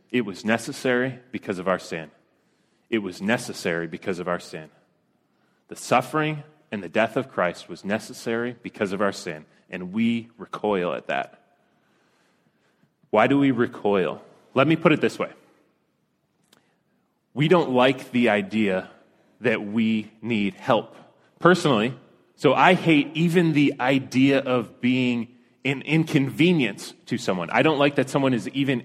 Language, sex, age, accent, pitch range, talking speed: English, male, 30-49, American, 110-140 Hz, 150 wpm